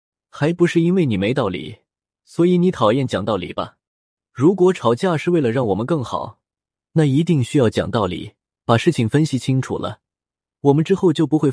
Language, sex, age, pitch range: Chinese, male, 20-39, 115-165 Hz